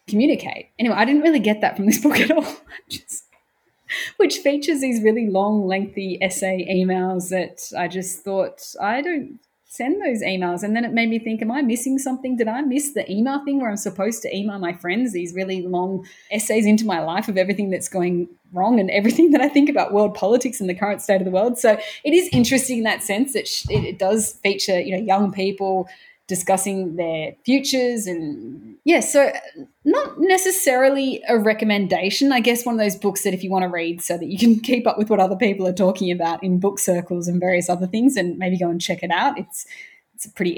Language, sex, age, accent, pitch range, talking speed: English, female, 20-39, Australian, 185-245 Hz, 215 wpm